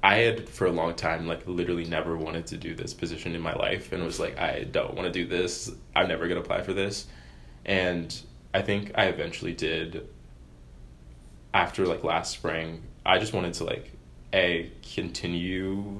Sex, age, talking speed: male, 20-39, 185 wpm